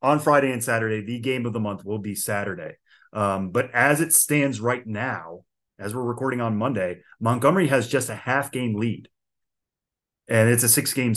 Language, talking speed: English, 185 wpm